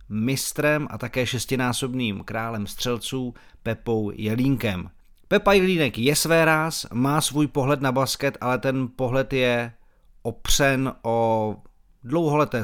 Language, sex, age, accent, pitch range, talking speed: Czech, male, 40-59, native, 120-140 Hz, 115 wpm